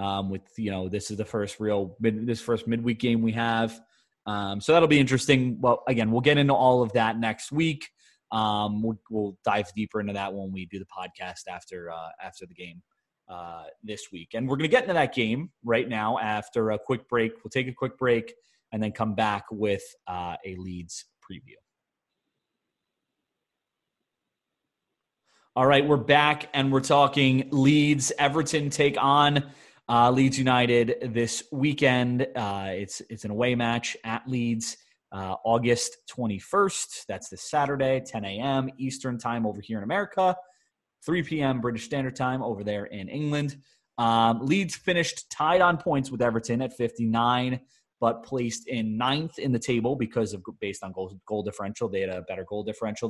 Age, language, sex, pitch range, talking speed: 30-49, English, male, 105-135 Hz, 175 wpm